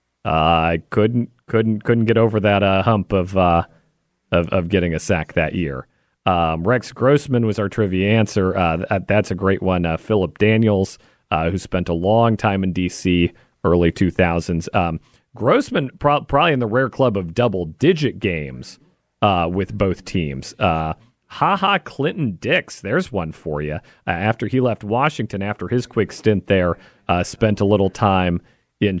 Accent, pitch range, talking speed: American, 90-120 Hz, 175 wpm